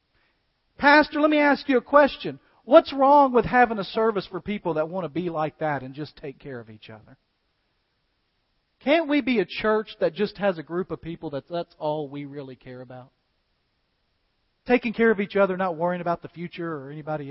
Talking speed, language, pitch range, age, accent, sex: 205 wpm, English, 120-185 Hz, 40-59, American, male